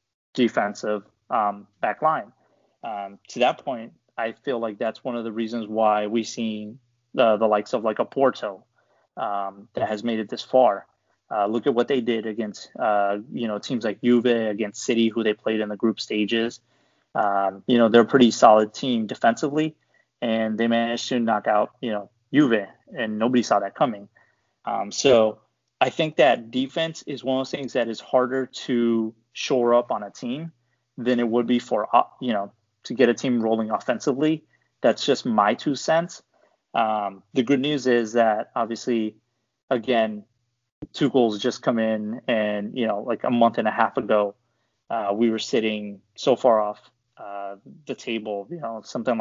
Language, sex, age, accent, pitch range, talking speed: English, male, 20-39, American, 105-120 Hz, 185 wpm